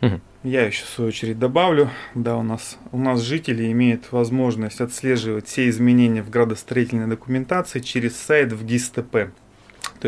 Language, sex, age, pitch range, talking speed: Russian, male, 30-49, 110-130 Hz, 145 wpm